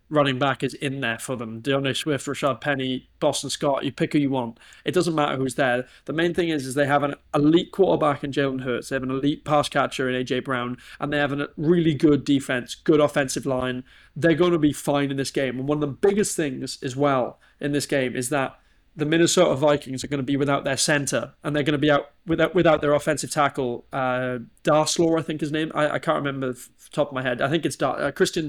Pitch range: 135-155 Hz